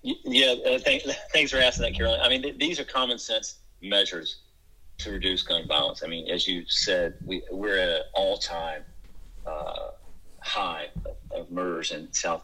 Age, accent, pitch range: 40-59, American, 90-120 Hz